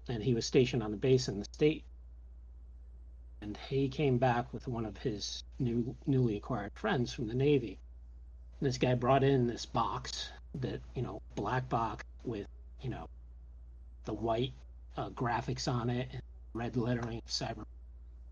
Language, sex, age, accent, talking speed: English, male, 50-69, American, 165 wpm